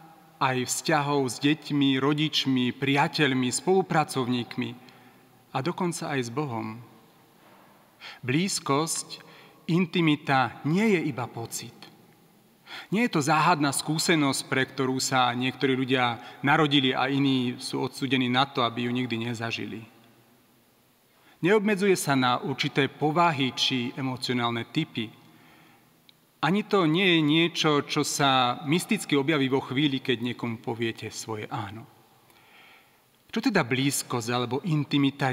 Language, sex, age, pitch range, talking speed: Slovak, male, 40-59, 125-160 Hz, 115 wpm